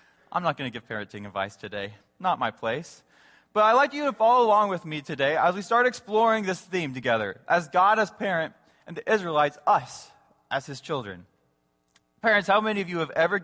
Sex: male